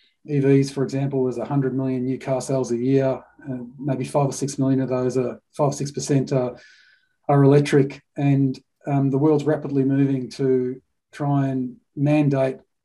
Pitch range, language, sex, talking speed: 135-150 Hz, English, male, 170 wpm